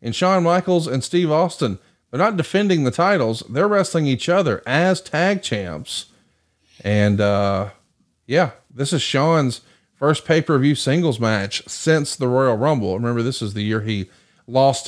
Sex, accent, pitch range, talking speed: male, American, 120-165 Hz, 155 wpm